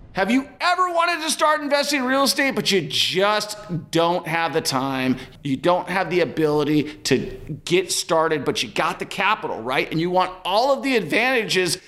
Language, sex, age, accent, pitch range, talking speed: English, male, 40-59, American, 155-220 Hz, 190 wpm